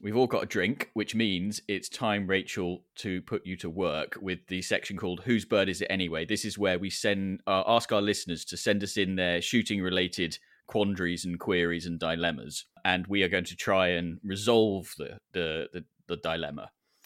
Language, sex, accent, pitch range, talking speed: English, male, British, 90-115 Hz, 205 wpm